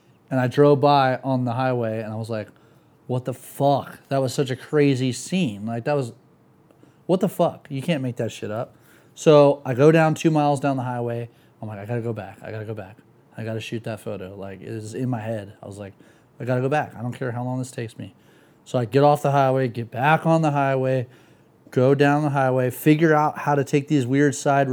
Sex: male